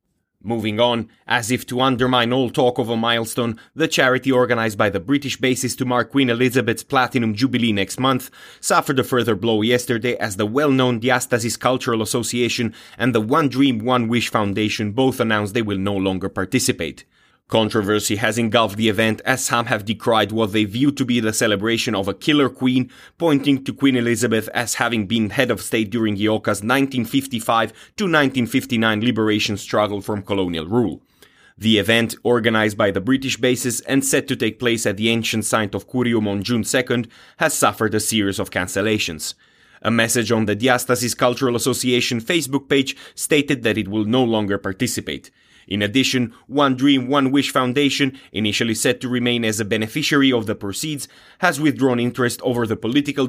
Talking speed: 175 wpm